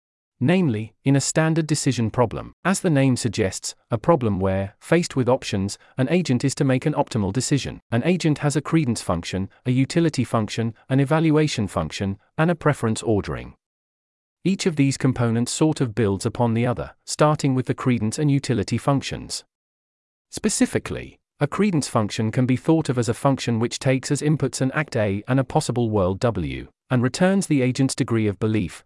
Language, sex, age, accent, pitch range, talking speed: English, male, 40-59, British, 110-140 Hz, 180 wpm